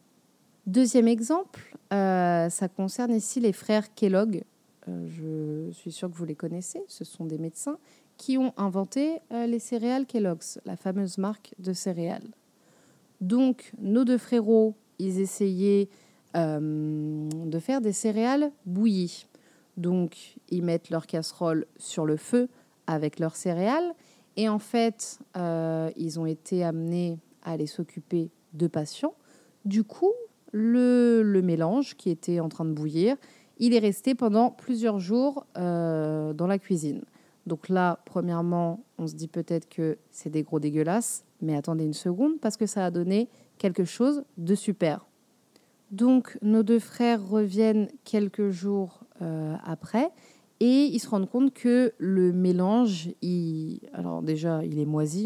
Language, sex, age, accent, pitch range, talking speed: French, female, 30-49, French, 165-230 Hz, 150 wpm